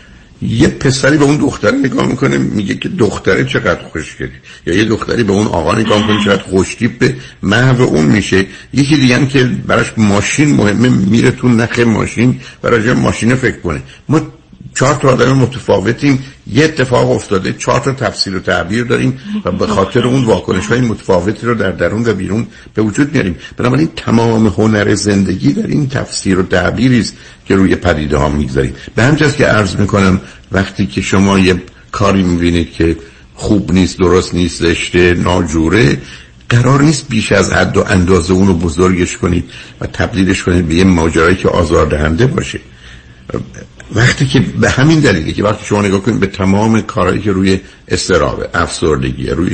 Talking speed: 165 wpm